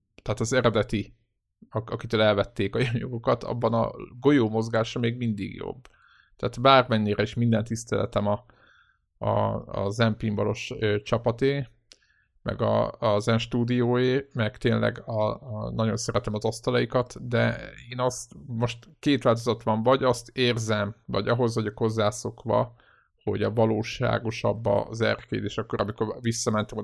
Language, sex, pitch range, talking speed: Hungarian, male, 105-120 Hz, 135 wpm